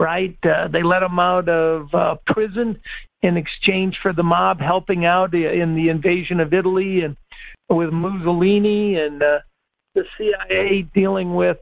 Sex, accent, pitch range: male, American, 175-210 Hz